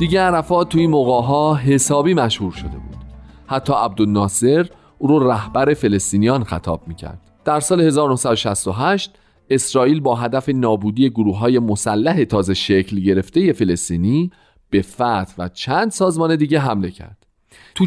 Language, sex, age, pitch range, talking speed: Persian, male, 40-59, 100-155 Hz, 135 wpm